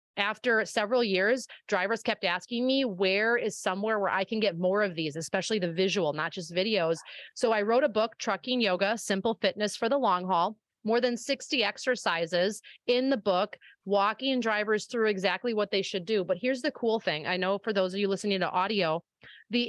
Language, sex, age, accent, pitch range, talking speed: English, female, 30-49, American, 195-260 Hz, 200 wpm